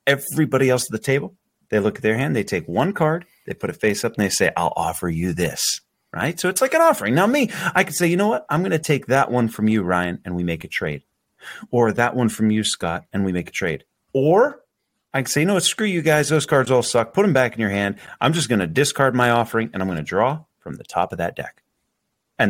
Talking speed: 270 wpm